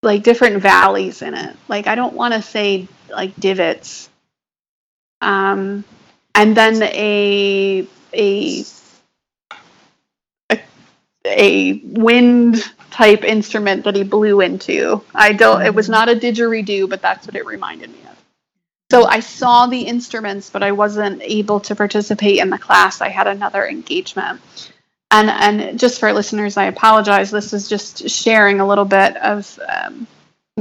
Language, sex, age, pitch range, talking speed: English, female, 30-49, 200-235 Hz, 150 wpm